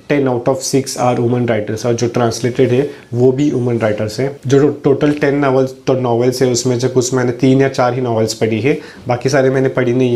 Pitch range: 115-130 Hz